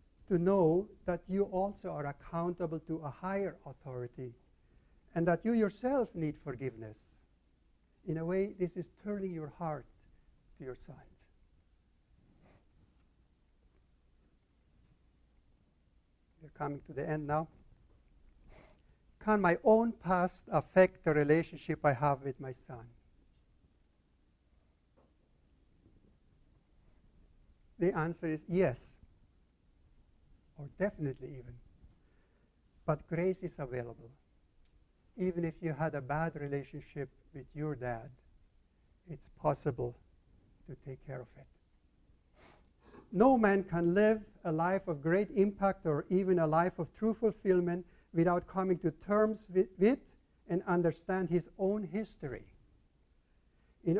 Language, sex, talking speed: English, male, 115 wpm